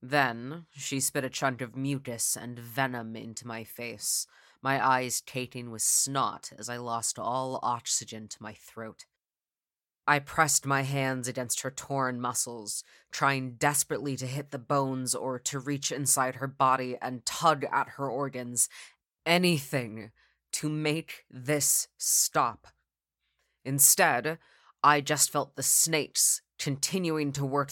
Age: 20-39